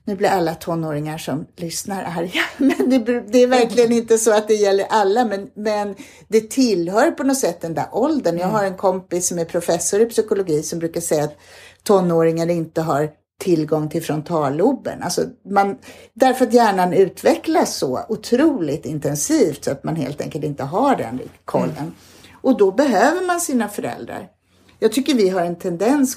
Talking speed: 170 wpm